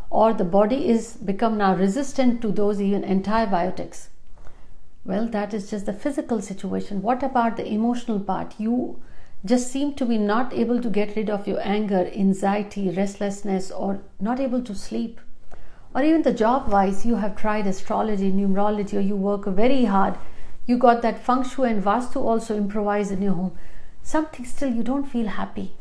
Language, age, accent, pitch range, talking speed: Hindi, 60-79, native, 200-250 Hz, 175 wpm